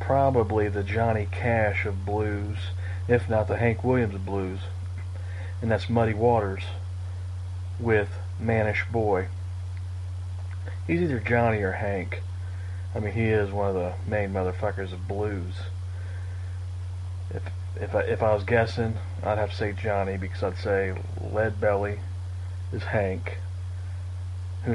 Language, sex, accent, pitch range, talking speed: English, male, American, 90-110 Hz, 135 wpm